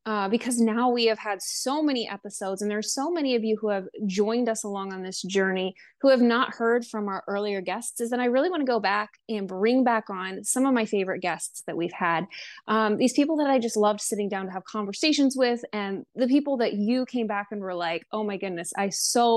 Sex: female